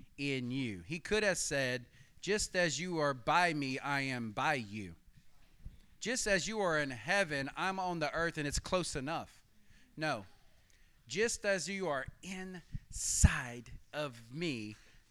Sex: male